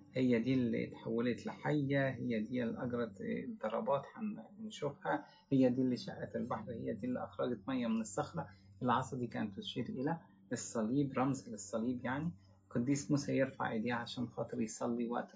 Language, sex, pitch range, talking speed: English, male, 120-190 Hz, 150 wpm